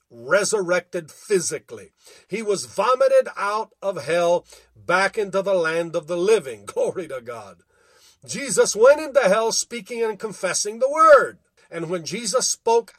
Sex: male